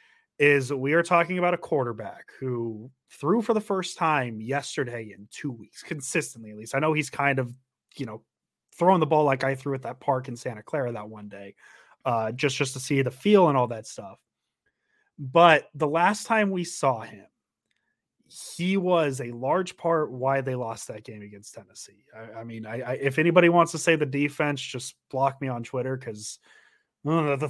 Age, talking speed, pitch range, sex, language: 30-49, 200 wpm, 130-170 Hz, male, English